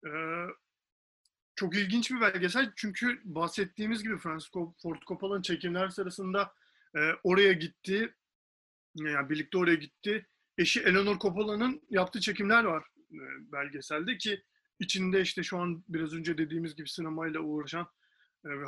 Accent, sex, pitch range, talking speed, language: native, male, 160-205 Hz, 130 wpm, Turkish